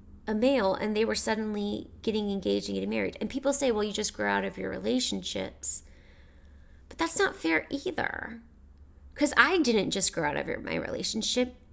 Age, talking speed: 30-49, 185 wpm